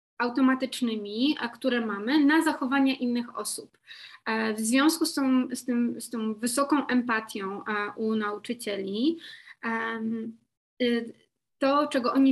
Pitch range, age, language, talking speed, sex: 225-260 Hz, 20-39, Polish, 105 wpm, female